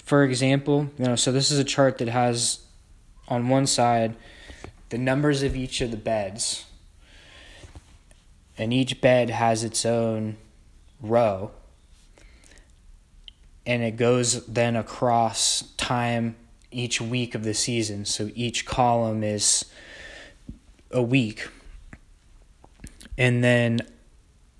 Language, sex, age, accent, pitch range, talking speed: English, male, 20-39, American, 95-125 Hz, 115 wpm